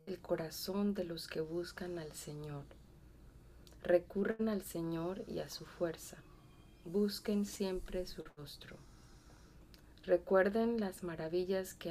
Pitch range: 155-185 Hz